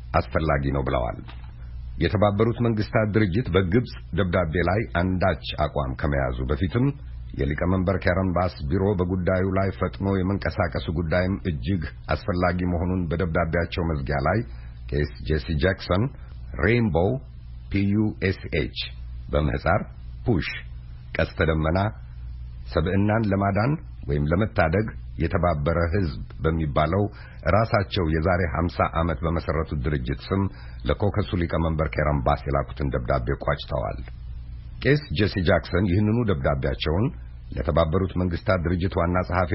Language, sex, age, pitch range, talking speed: Amharic, male, 50-69, 70-95 Hz, 100 wpm